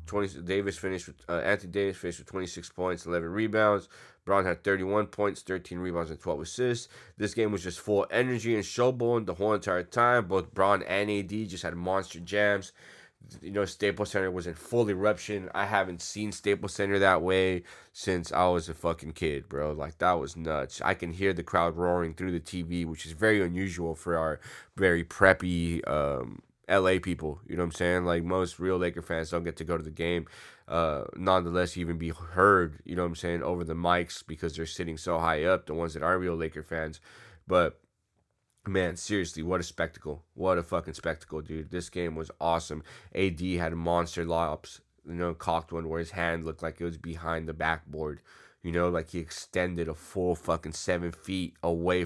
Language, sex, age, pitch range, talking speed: English, male, 20-39, 85-95 Hz, 205 wpm